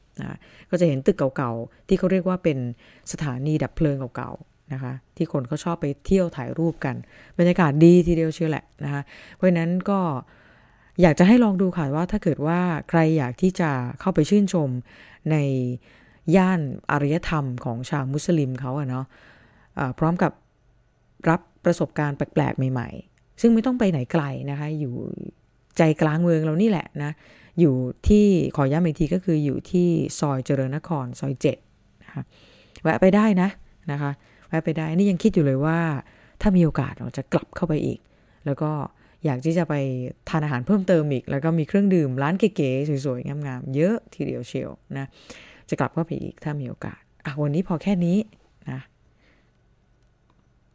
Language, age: English, 20-39